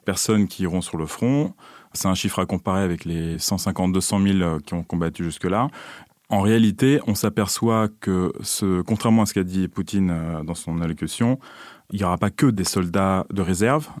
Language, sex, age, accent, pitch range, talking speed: French, male, 30-49, French, 95-125 Hz, 185 wpm